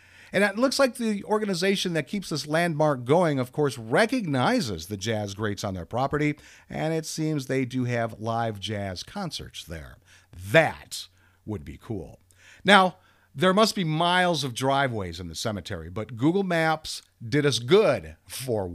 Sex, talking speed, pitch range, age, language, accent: male, 165 wpm, 105-155 Hz, 50-69, English, American